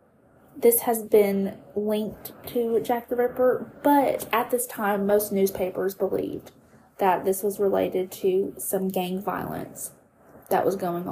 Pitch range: 195-240 Hz